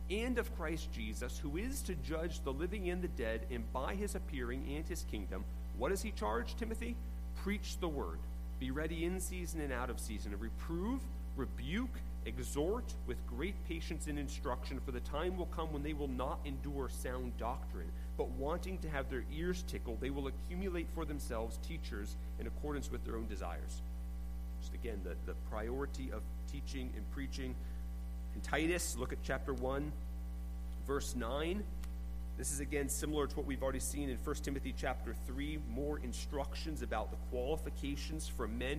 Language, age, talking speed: English, 40-59, 175 wpm